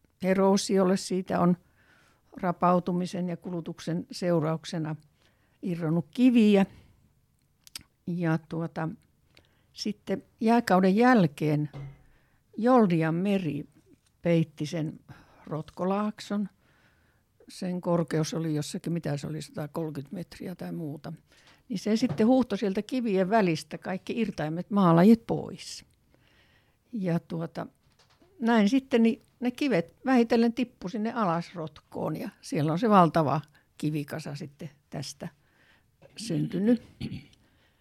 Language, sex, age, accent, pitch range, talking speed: Finnish, female, 60-79, native, 160-220 Hz, 95 wpm